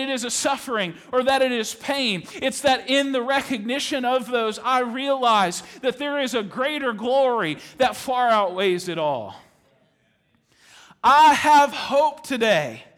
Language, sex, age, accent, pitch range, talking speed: English, male, 40-59, American, 205-280 Hz, 155 wpm